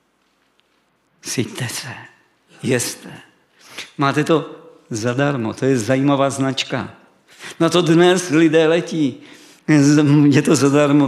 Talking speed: 100 wpm